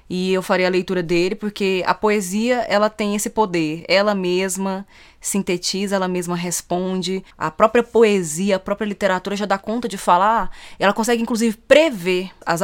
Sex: female